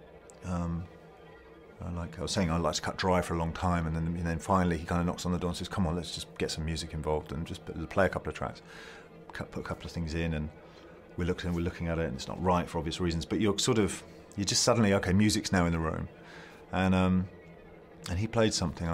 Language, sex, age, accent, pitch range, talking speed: English, male, 30-49, British, 85-100 Hz, 265 wpm